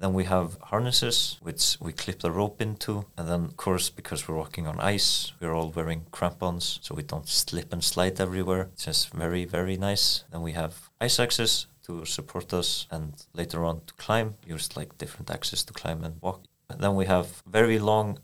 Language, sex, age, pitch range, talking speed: English, male, 30-49, 80-95 Hz, 205 wpm